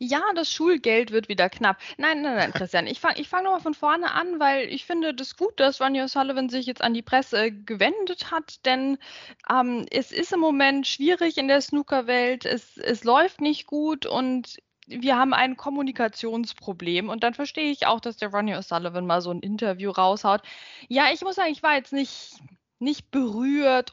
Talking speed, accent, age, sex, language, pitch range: 195 wpm, German, 20-39, female, German, 230-295 Hz